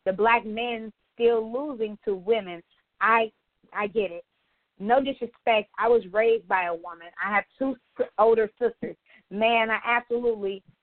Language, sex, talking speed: English, female, 150 wpm